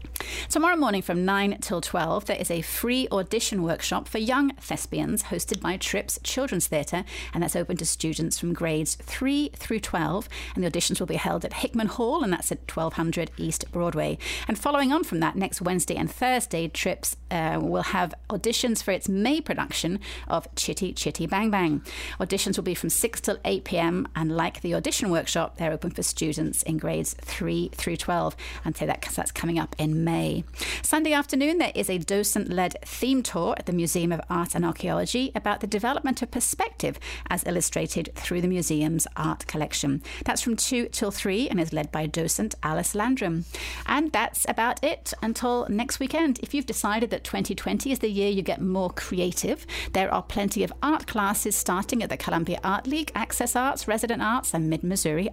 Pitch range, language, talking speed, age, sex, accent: 170-235 Hz, English, 190 wpm, 30-49, female, British